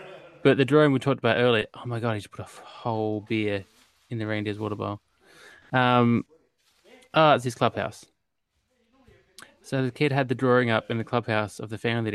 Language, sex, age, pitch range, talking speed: English, male, 20-39, 105-130 Hz, 200 wpm